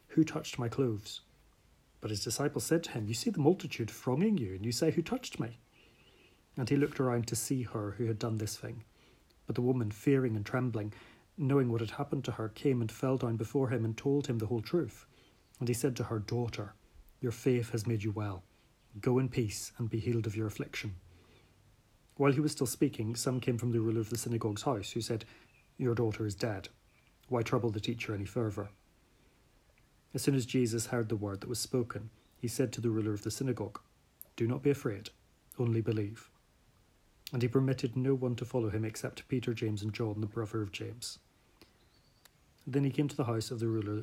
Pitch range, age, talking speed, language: 110-130 Hz, 30-49, 210 wpm, English